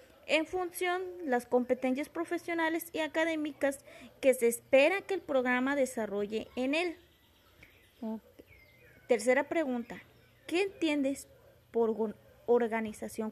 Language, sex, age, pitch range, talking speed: Spanish, female, 20-39, 230-300 Hz, 105 wpm